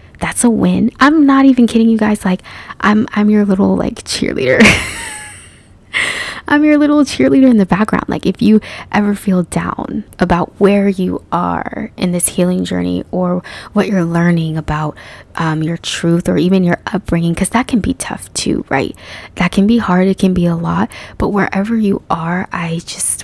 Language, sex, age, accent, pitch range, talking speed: English, female, 20-39, American, 175-220 Hz, 185 wpm